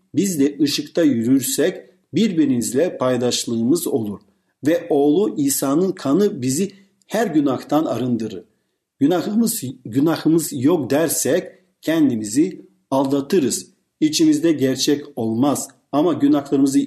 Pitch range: 130-205 Hz